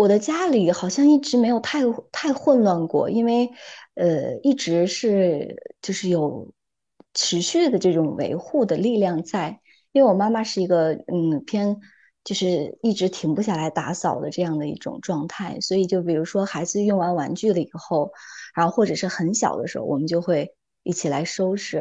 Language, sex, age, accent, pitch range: Chinese, female, 20-39, native, 170-220 Hz